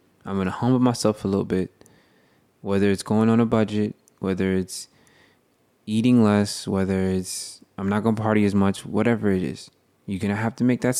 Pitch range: 100-125 Hz